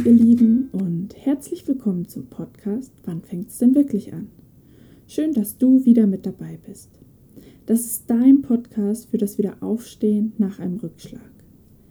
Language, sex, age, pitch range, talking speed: German, female, 20-39, 205-235 Hz, 150 wpm